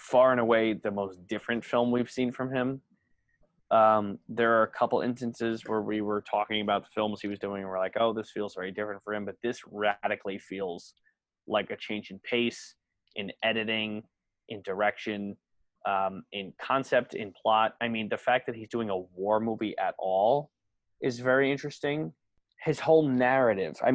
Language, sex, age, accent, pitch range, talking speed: English, male, 20-39, American, 105-120 Hz, 185 wpm